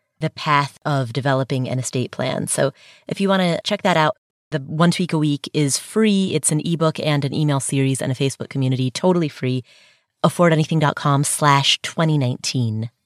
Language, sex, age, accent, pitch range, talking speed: English, female, 30-49, American, 145-210 Hz, 175 wpm